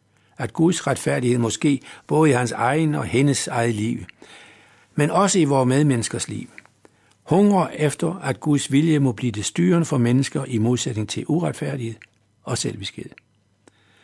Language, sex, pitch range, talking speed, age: Danish, male, 115-160 Hz, 150 wpm, 60-79